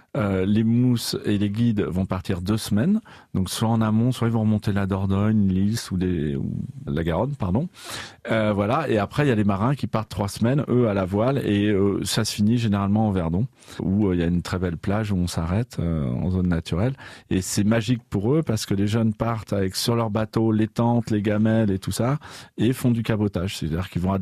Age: 40-59